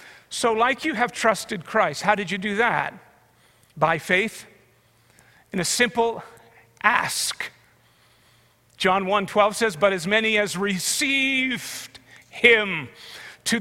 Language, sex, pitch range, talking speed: English, male, 180-245 Hz, 120 wpm